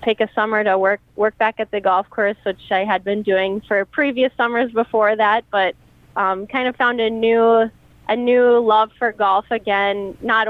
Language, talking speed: English, 200 wpm